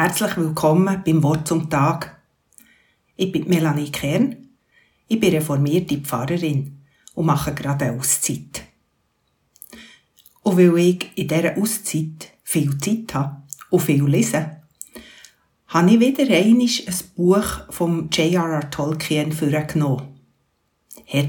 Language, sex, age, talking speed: German, female, 60-79, 120 wpm